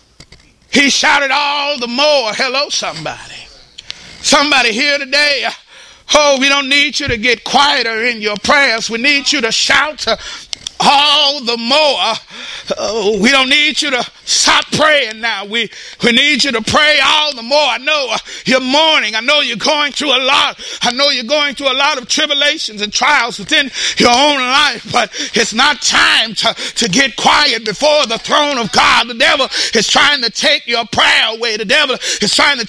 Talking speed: 185 wpm